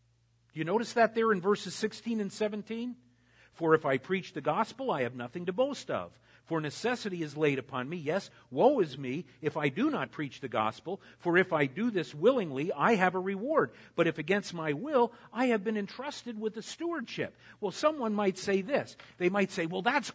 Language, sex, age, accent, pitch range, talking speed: English, male, 50-69, American, 155-225 Hz, 210 wpm